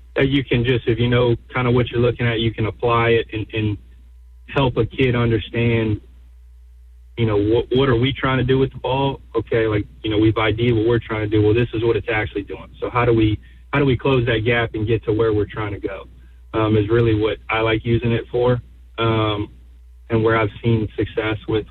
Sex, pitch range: male, 100-115 Hz